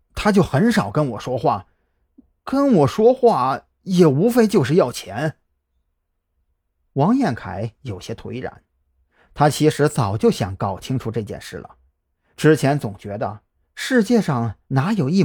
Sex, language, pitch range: male, Chinese, 100-160 Hz